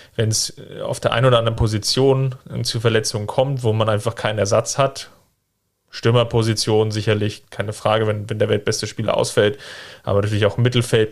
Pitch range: 105-125 Hz